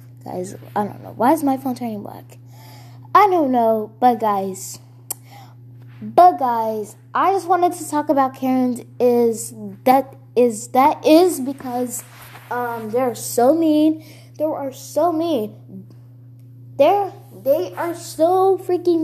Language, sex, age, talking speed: English, female, 10-29, 130 wpm